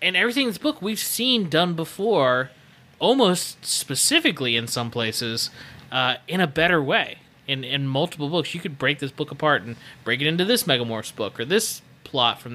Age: 20-39